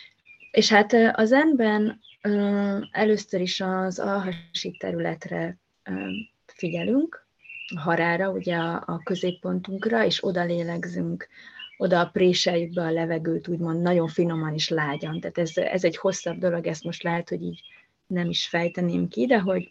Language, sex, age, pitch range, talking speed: Hungarian, female, 20-39, 170-195 Hz, 135 wpm